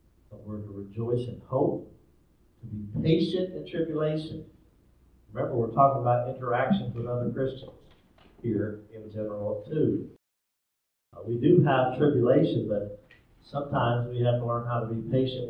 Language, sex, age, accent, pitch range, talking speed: English, male, 50-69, American, 105-130 Hz, 145 wpm